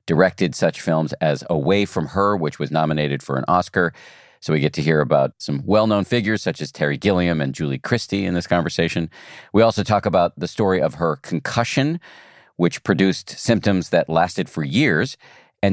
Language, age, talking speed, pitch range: English, 50-69, 185 wpm, 85-110 Hz